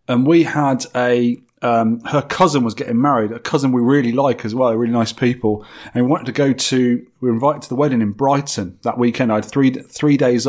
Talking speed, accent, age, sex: 235 wpm, British, 30-49, male